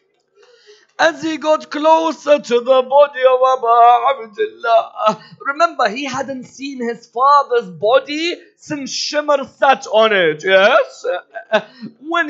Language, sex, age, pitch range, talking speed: English, male, 50-69, 235-305 Hz, 115 wpm